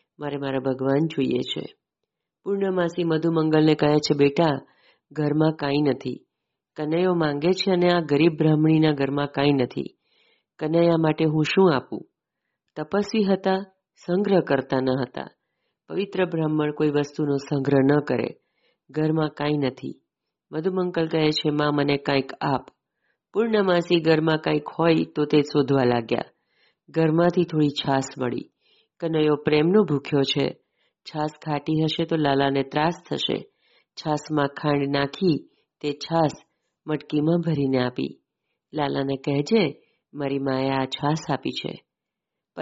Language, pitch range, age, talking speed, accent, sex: Gujarati, 145-175 Hz, 40-59, 105 wpm, native, female